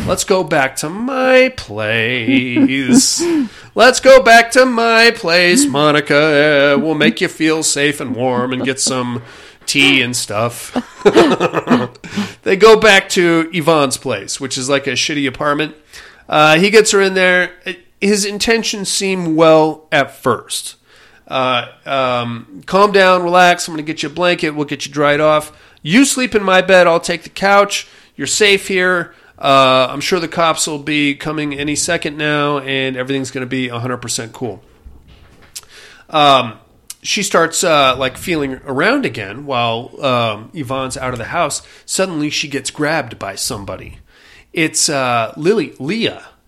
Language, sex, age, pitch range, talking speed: English, male, 40-59, 135-190 Hz, 160 wpm